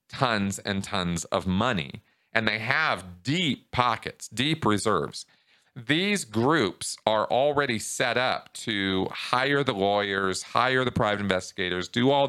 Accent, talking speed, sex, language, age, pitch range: American, 135 wpm, male, English, 40-59, 100-145 Hz